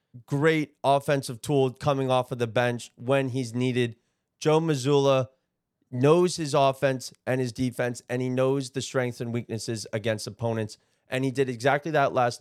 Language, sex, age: English, male, 30-49